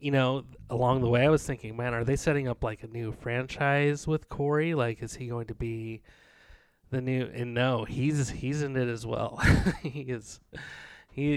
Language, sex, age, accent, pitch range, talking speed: English, male, 30-49, American, 115-140 Hz, 200 wpm